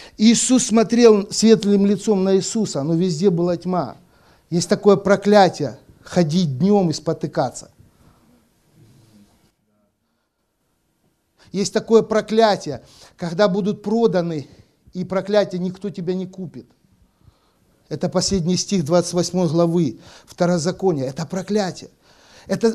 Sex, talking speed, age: male, 100 wpm, 50-69